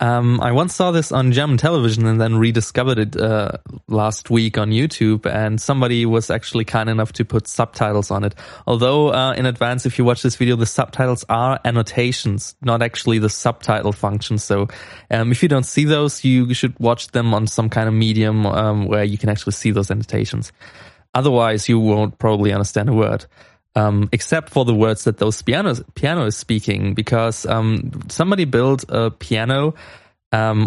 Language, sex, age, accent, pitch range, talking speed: English, male, 20-39, German, 110-125 Hz, 185 wpm